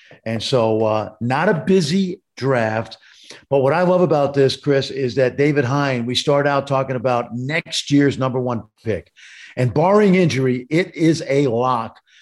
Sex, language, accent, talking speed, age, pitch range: male, English, American, 170 wpm, 50-69, 110-140 Hz